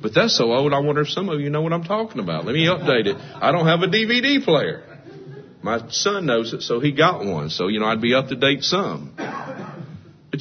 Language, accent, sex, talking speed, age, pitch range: English, American, male, 250 wpm, 50-69, 140-200 Hz